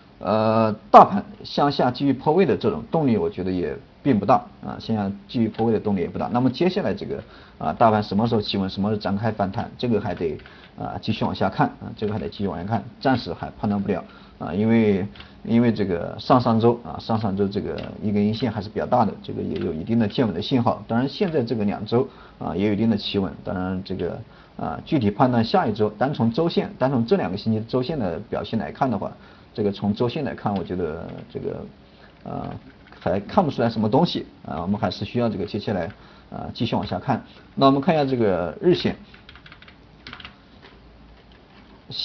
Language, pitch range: Chinese, 100-125 Hz